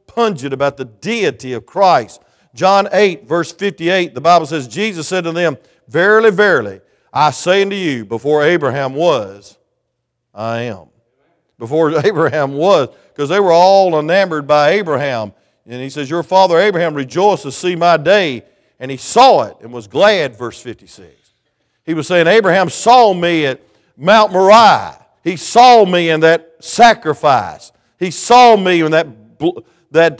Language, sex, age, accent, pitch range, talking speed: English, male, 50-69, American, 150-210 Hz, 155 wpm